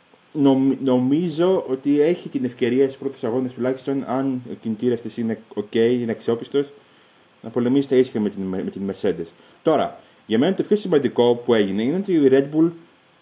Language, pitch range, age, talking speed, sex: Greek, 110-145 Hz, 20-39, 165 wpm, male